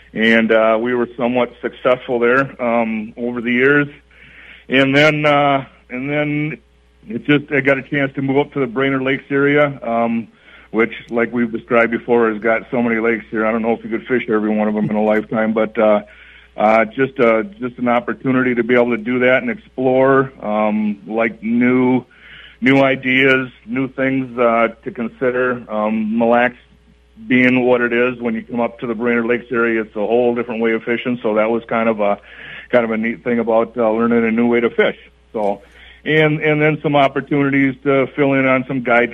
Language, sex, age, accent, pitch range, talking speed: English, male, 50-69, American, 110-130 Hz, 205 wpm